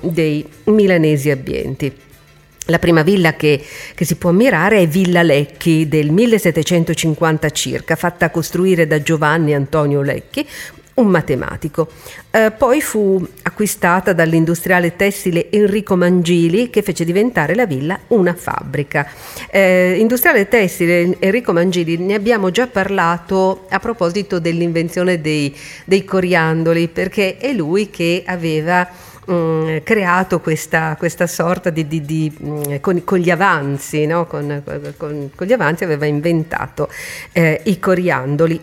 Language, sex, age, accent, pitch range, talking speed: Italian, female, 50-69, native, 155-190 Hz, 125 wpm